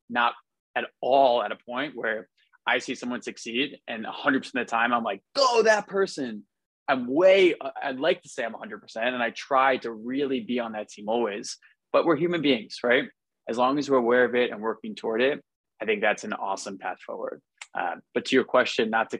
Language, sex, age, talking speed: English, male, 20-39, 215 wpm